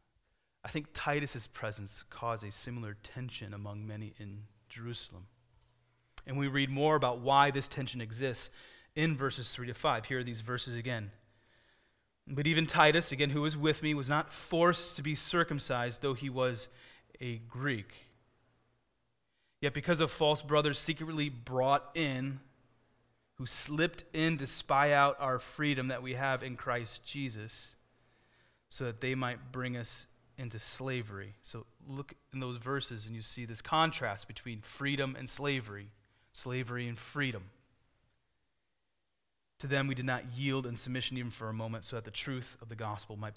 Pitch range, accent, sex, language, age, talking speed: 115-140 Hz, American, male, English, 30-49, 160 wpm